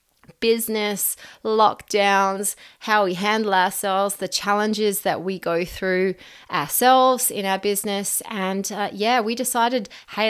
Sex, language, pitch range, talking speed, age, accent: female, English, 165-205 Hz, 130 wpm, 20-39, Australian